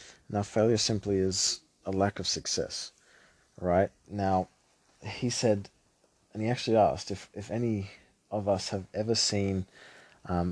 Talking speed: 145 wpm